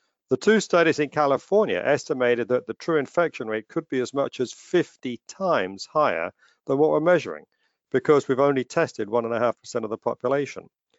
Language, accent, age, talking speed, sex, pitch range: English, British, 50-69, 170 wpm, male, 125-155 Hz